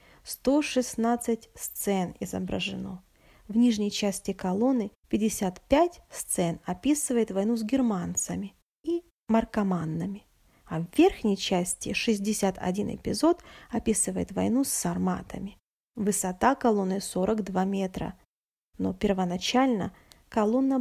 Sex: female